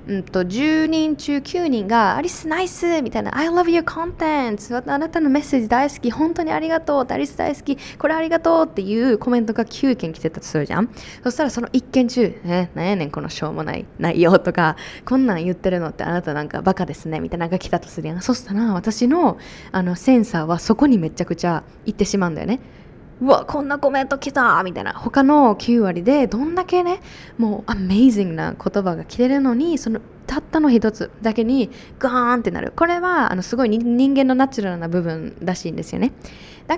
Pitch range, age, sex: 185-285 Hz, 20-39, female